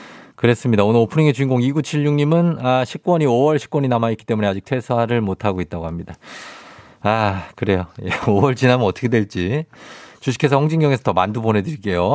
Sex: male